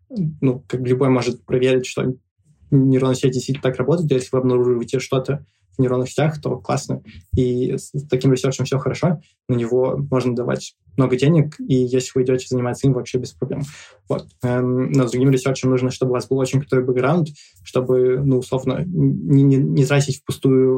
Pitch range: 125-135 Hz